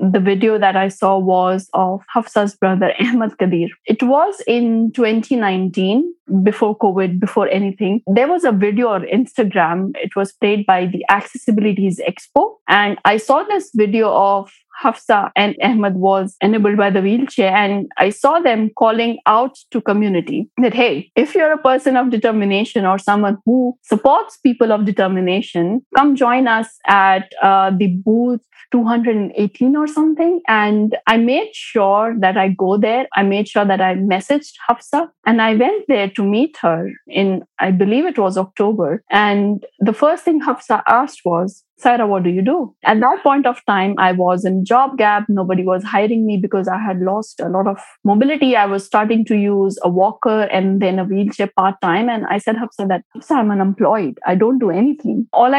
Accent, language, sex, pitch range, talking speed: Indian, English, female, 195-240 Hz, 180 wpm